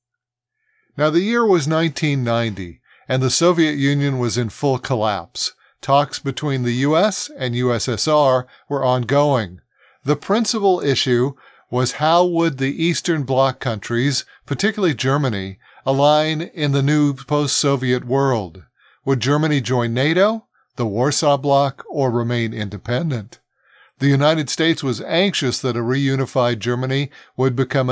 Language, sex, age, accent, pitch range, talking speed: English, male, 50-69, American, 125-155 Hz, 130 wpm